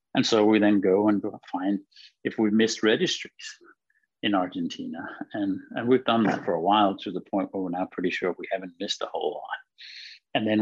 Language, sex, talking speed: English, male, 210 wpm